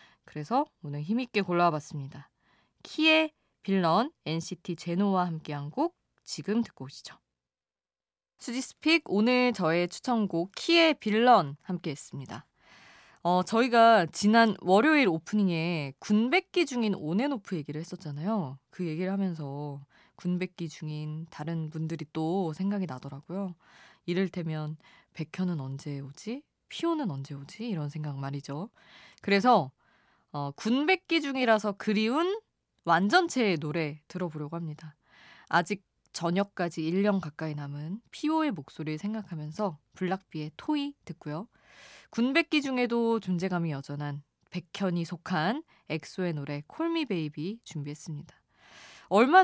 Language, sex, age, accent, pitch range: Korean, female, 20-39, native, 155-220 Hz